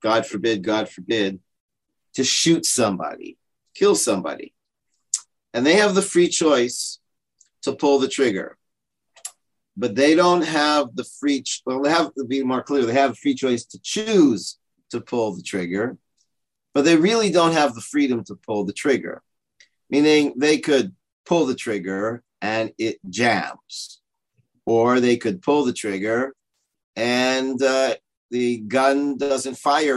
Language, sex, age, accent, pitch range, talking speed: English, male, 50-69, American, 115-150 Hz, 150 wpm